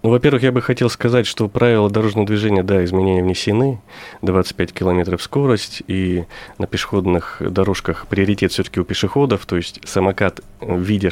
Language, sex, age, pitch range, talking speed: Russian, male, 30-49, 95-115 Hz, 150 wpm